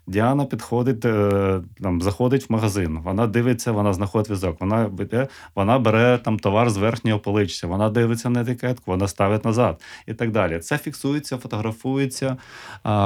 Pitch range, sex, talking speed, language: 95-115 Hz, male, 155 wpm, Ukrainian